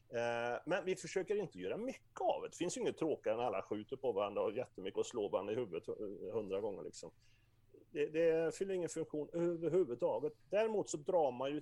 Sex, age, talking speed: male, 40-59, 200 wpm